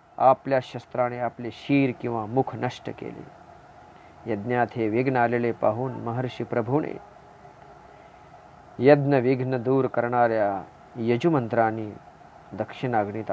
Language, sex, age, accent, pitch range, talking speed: Marathi, male, 40-59, native, 115-140 Hz, 95 wpm